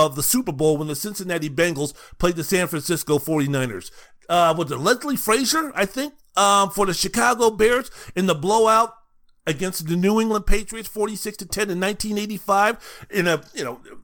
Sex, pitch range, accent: male, 145-205 Hz, American